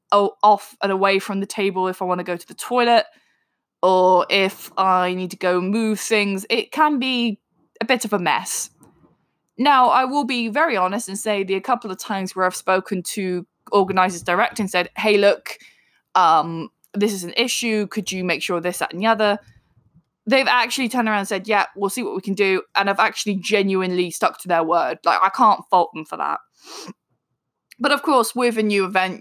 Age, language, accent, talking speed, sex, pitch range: 20-39, English, British, 210 wpm, female, 185-225 Hz